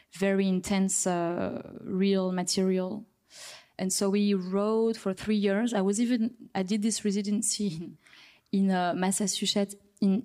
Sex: female